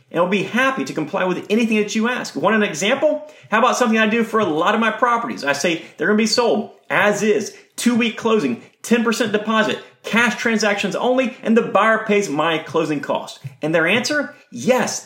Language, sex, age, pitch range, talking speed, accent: English, male, 30-49, 190-255 Hz, 205 wpm, American